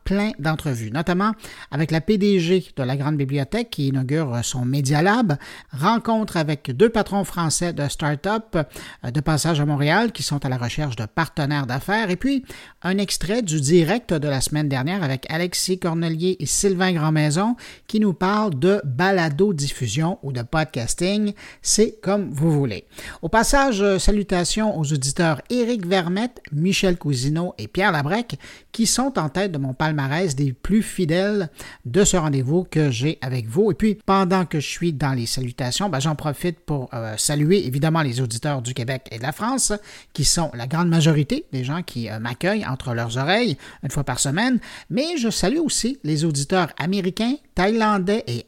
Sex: male